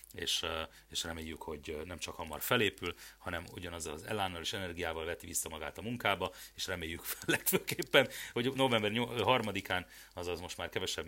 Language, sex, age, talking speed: Hungarian, male, 30-49, 160 wpm